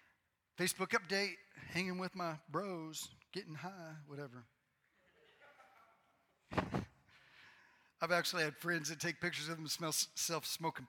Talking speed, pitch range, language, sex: 115 wpm, 145-170 Hz, English, male